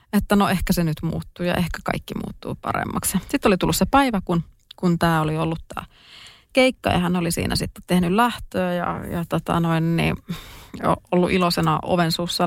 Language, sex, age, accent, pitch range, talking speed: Finnish, female, 30-49, native, 165-205 Hz, 190 wpm